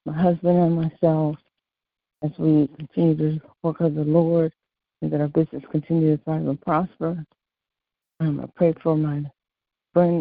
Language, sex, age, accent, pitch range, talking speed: English, female, 60-79, American, 150-170 Hz, 160 wpm